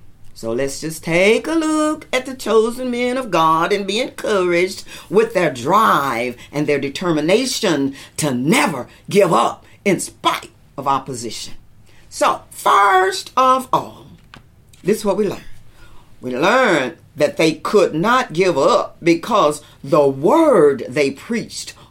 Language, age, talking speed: English, 50-69, 140 wpm